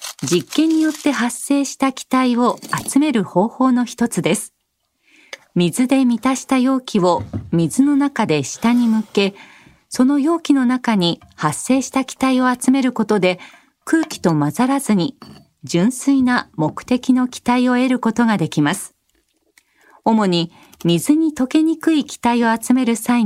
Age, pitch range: 40-59, 180-270 Hz